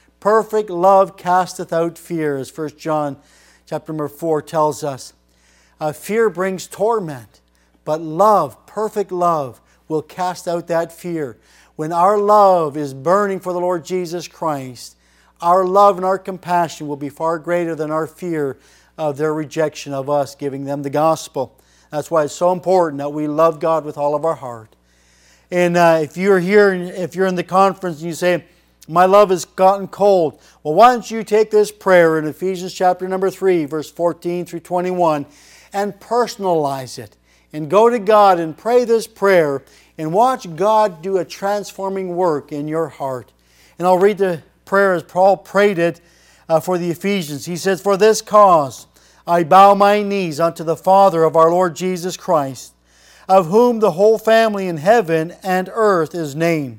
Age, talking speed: 50-69, 175 wpm